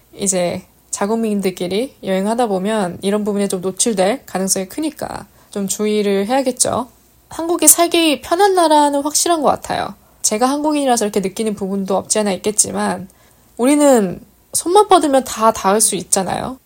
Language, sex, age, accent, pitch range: Korean, female, 20-39, native, 195-260 Hz